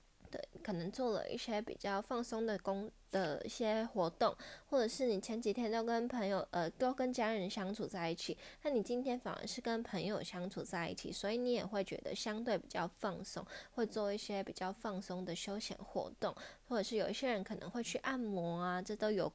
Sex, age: female, 20-39